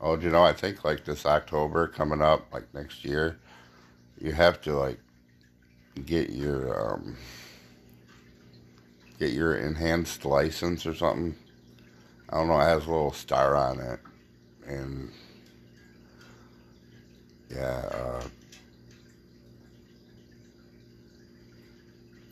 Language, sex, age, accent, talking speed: English, male, 60-79, American, 105 wpm